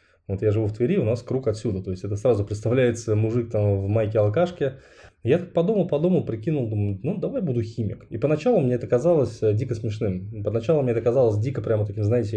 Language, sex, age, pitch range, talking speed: Russian, male, 20-39, 105-125 Hz, 215 wpm